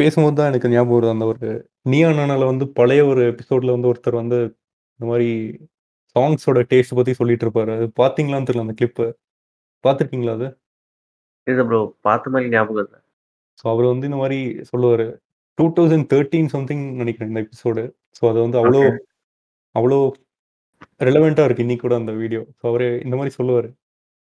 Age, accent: 30-49, native